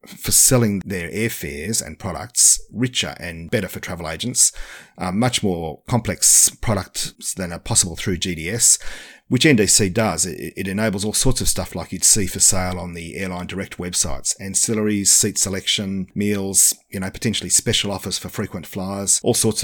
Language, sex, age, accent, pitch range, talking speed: English, male, 40-59, Australian, 90-110 Hz, 170 wpm